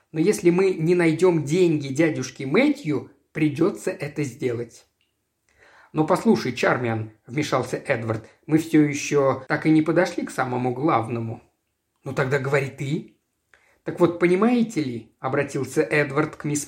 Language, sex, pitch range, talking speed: Russian, male, 130-185 Hz, 135 wpm